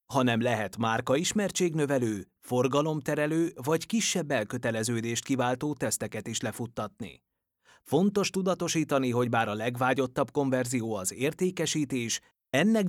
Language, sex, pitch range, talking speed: Hungarian, male, 120-165 Hz, 100 wpm